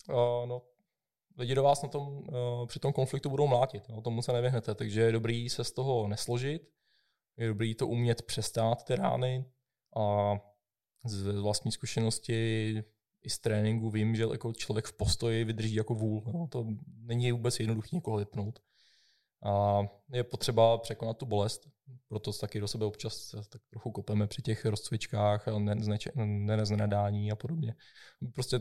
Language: Czech